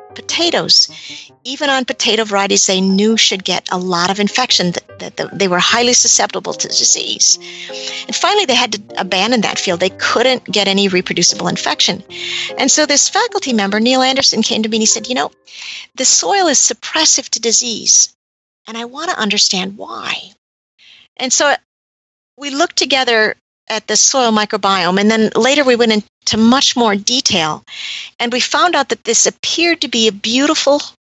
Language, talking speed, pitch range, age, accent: English, 175 wpm, 200-260 Hz, 50-69, American